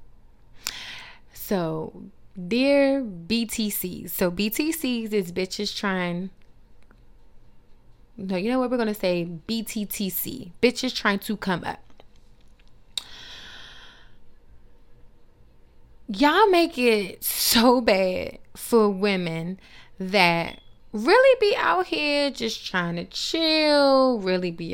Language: English